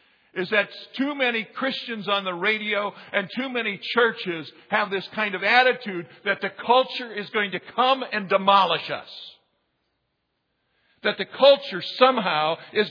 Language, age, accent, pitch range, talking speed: English, 50-69, American, 170-235 Hz, 150 wpm